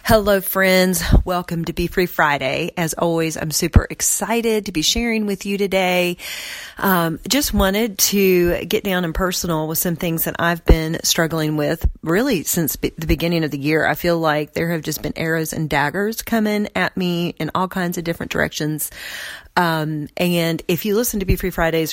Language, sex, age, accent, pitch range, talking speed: English, female, 40-59, American, 155-190 Hz, 190 wpm